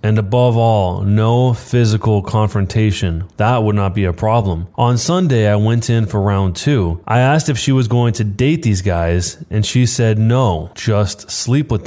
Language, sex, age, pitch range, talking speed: English, male, 20-39, 100-120 Hz, 185 wpm